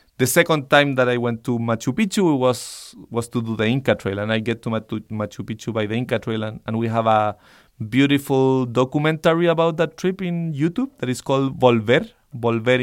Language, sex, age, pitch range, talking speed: English, male, 30-49, 115-145 Hz, 200 wpm